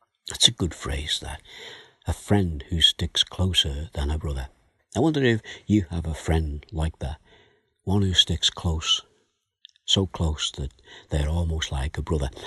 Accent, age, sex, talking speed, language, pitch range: British, 60-79, male, 165 wpm, English, 80-100 Hz